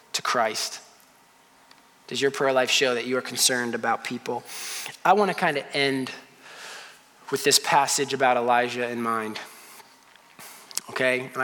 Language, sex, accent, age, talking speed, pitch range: English, male, American, 20-39, 135 wpm, 125-140 Hz